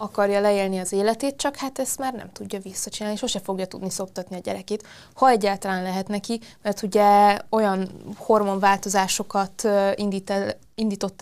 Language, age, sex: Hungarian, 20-39, female